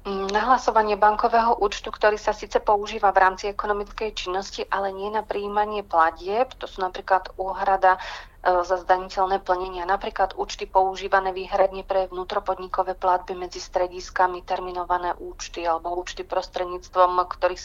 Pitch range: 180-205 Hz